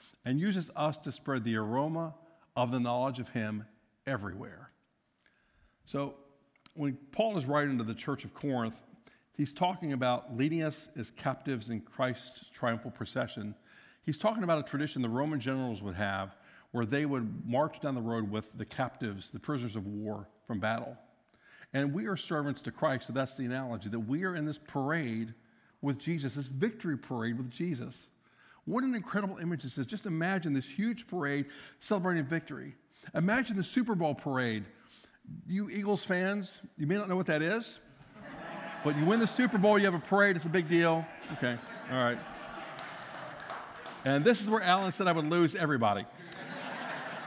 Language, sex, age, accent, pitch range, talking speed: English, male, 50-69, American, 120-170 Hz, 175 wpm